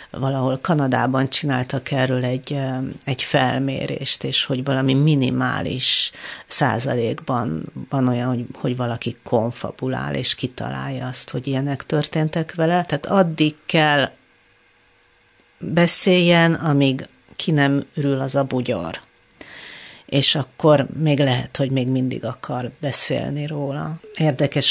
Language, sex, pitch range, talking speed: Hungarian, female, 130-155 Hz, 115 wpm